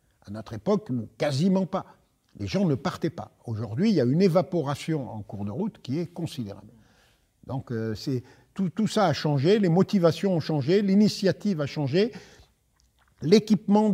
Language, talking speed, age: French, 165 wpm, 50-69